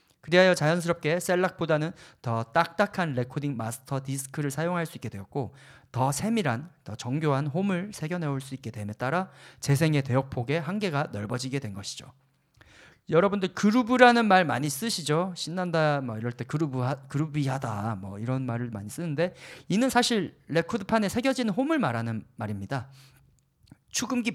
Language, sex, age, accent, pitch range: Korean, male, 40-59, native, 130-180 Hz